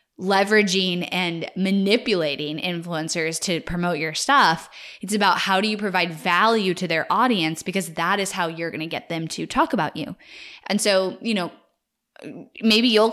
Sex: female